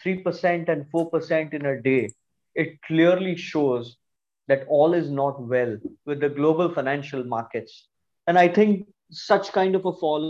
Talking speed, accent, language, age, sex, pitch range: 155 wpm, Indian, English, 20-39, male, 140-165 Hz